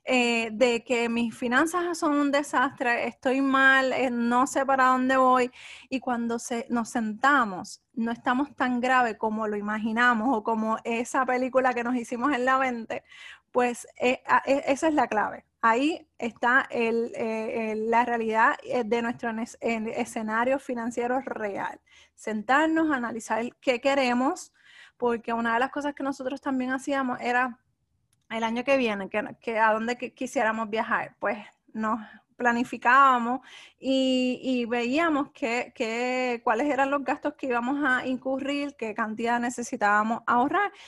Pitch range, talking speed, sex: 230-275 Hz, 145 wpm, female